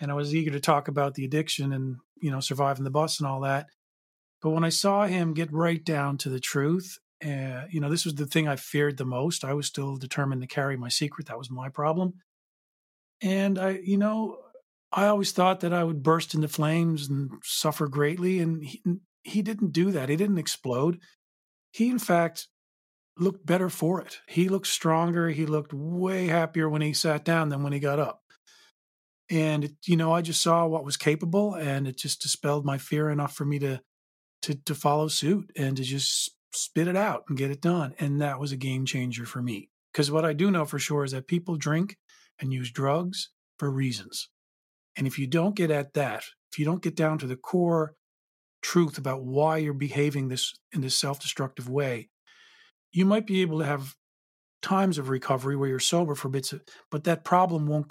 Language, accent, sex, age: English, American, male, 40-59